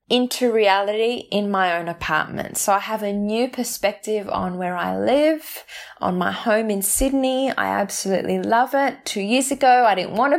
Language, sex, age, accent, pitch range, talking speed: English, female, 10-29, Australian, 195-265 Hz, 180 wpm